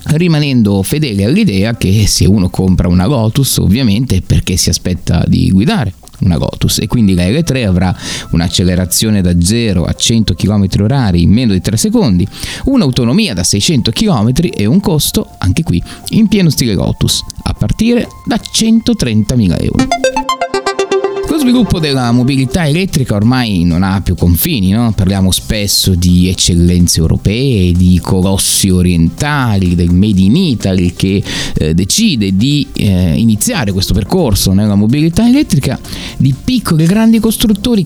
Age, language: 30-49, Italian